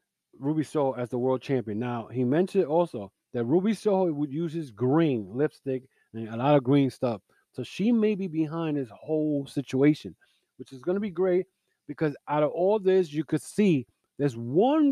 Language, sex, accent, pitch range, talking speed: English, male, American, 125-165 Hz, 195 wpm